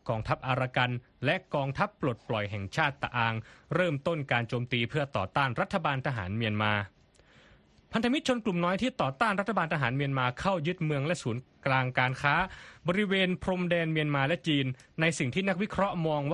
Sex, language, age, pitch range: male, Thai, 20-39, 120-170 Hz